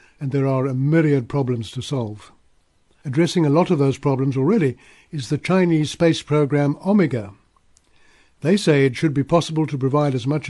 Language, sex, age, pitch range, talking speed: English, male, 60-79, 130-165 Hz, 175 wpm